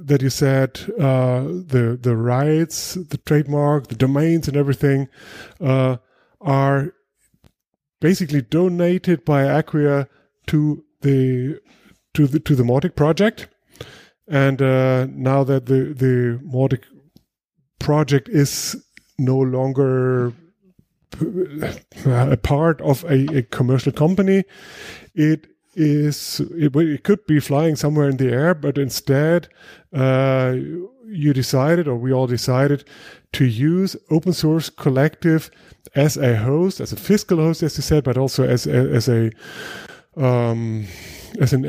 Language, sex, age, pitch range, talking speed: German, male, 30-49, 130-155 Hz, 125 wpm